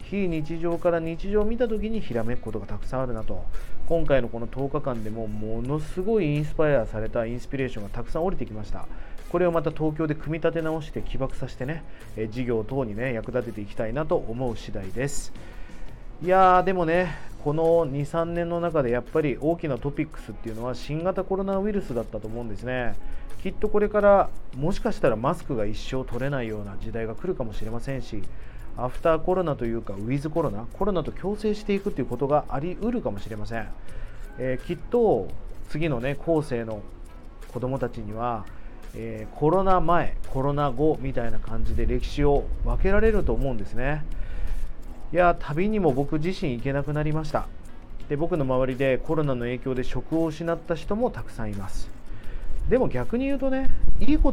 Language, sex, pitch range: Japanese, male, 115-165 Hz